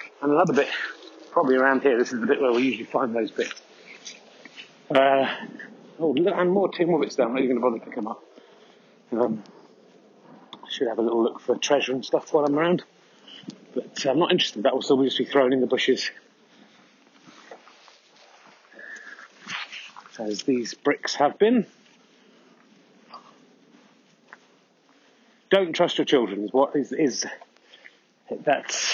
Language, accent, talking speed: English, British, 150 wpm